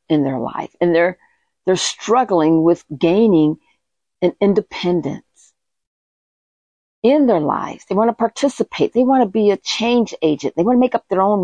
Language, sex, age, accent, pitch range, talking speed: English, female, 50-69, American, 170-235 Hz, 170 wpm